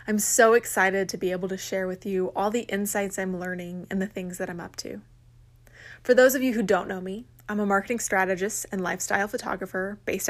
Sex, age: female, 20-39